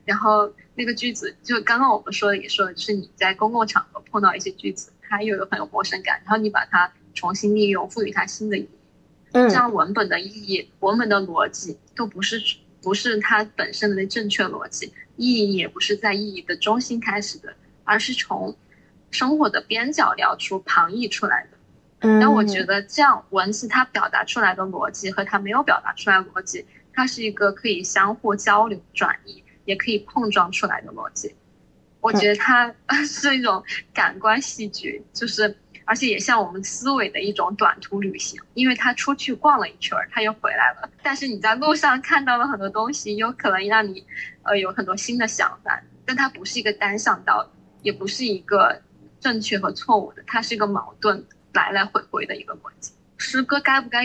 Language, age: Chinese, 10-29